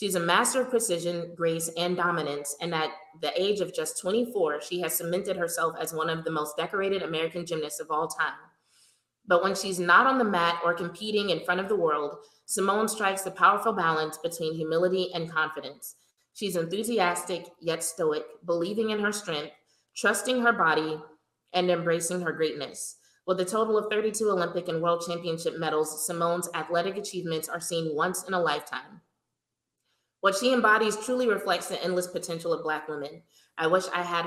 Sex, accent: female, American